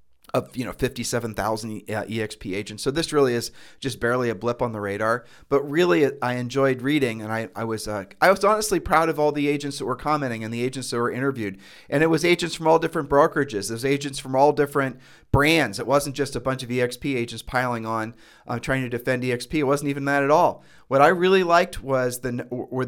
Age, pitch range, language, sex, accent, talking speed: 40-59, 115-145 Hz, English, male, American, 230 wpm